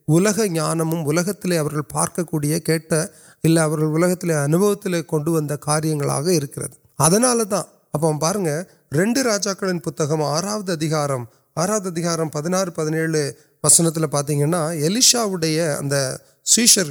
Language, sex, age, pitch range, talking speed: Urdu, male, 30-49, 150-195 Hz, 55 wpm